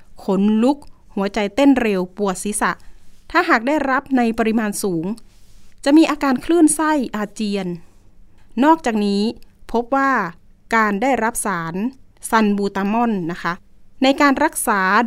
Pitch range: 195-255 Hz